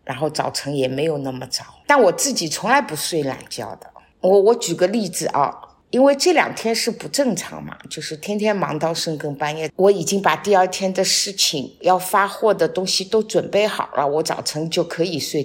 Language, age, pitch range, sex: Chinese, 50-69, 155-215 Hz, female